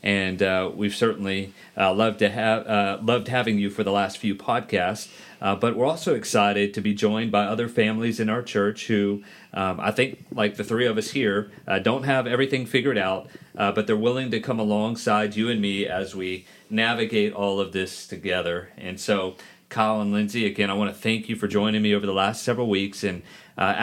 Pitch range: 95-110 Hz